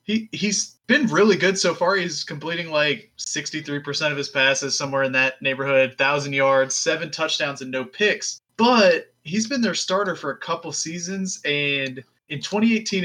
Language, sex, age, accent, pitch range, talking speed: English, male, 20-39, American, 135-170 Hz, 170 wpm